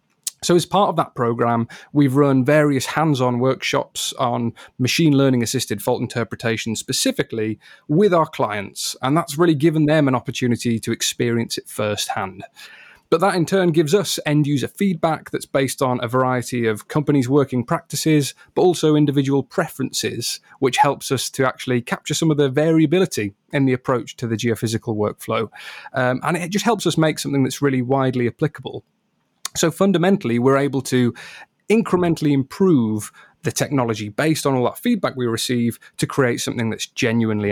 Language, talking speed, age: English, 165 wpm, 30-49